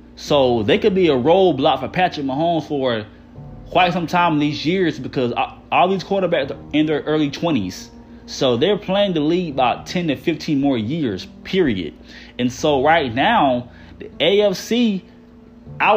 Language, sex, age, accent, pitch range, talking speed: English, male, 20-39, American, 130-185 Hz, 170 wpm